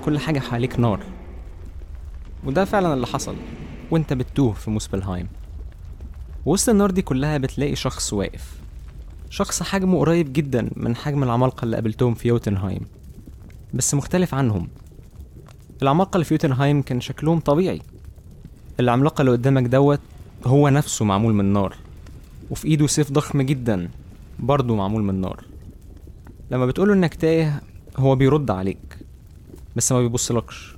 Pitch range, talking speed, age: 95-145 Hz, 135 wpm, 20-39